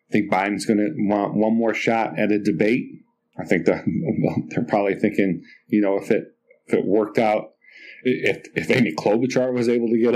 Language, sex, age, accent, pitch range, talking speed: English, male, 40-59, American, 100-115 Hz, 200 wpm